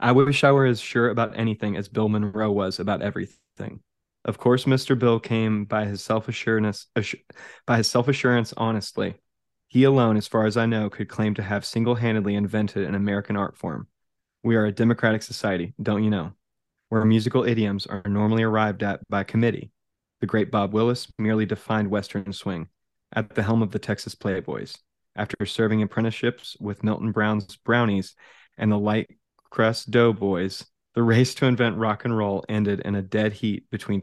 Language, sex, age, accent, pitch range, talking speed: English, male, 20-39, American, 100-115 Hz, 175 wpm